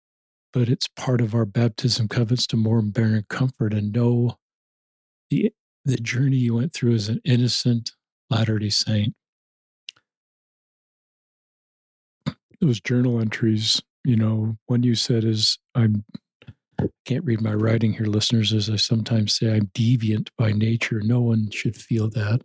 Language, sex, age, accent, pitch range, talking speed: English, male, 50-69, American, 110-125 Hz, 145 wpm